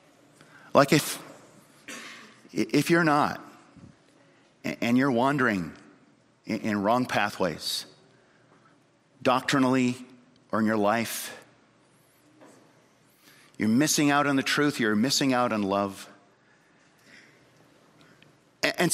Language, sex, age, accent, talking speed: English, male, 50-69, American, 90 wpm